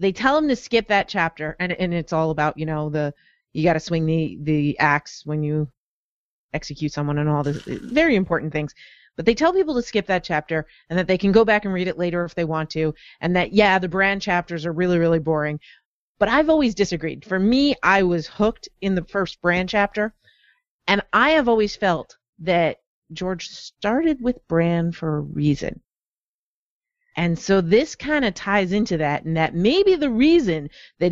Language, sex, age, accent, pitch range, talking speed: English, female, 30-49, American, 165-245 Hz, 200 wpm